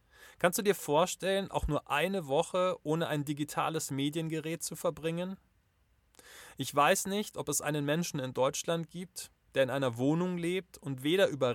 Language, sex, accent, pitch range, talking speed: German, male, German, 150-185 Hz, 165 wpm